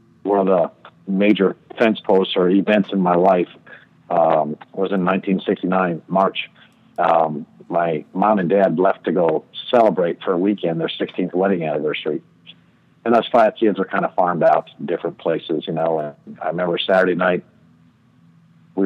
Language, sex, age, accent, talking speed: English, male, 50-69, American, 165 wpm